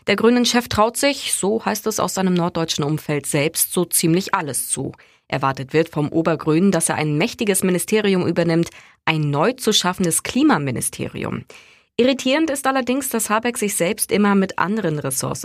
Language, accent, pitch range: German, German, 150-210 Hz